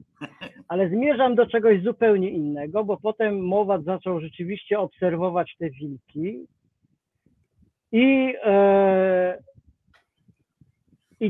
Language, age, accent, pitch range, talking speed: Polish, 40-59, native, 170-220 Hz, 85 wpm